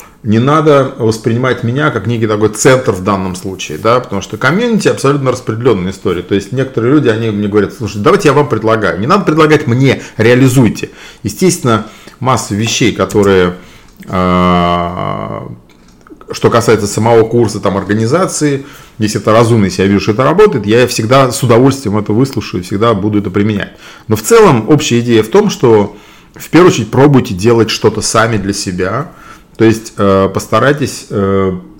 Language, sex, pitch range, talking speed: Russian, male, 100-135 Hz, 160 wpm